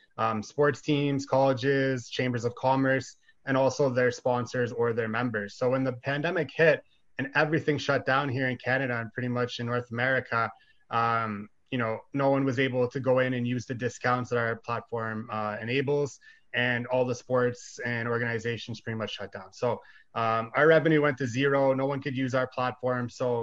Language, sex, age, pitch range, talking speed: English, male, 20-39, 120-140 Hz, 190 wpm